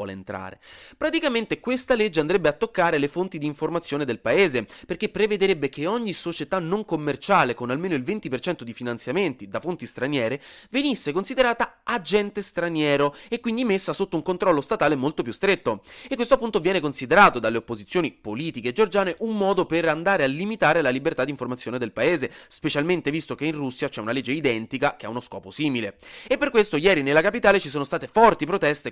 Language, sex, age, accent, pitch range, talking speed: Italian, male, 30-49, native, 135-205 Hz, 185 wpm